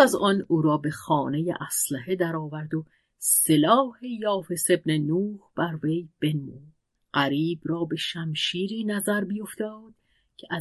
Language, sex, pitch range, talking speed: Persian, female, 150-210 Hz, 140 wpm